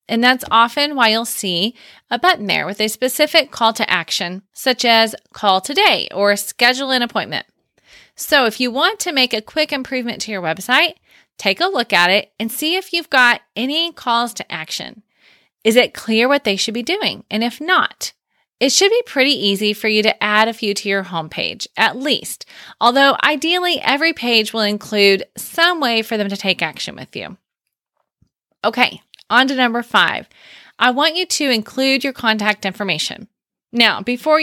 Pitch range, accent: 200-265 Hz, American